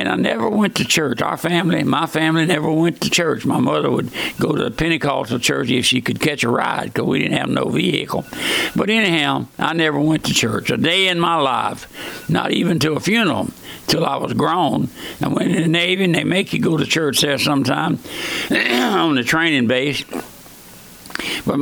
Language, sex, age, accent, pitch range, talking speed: English, male, 60-79, American, 135-170 Hz, 210 wpm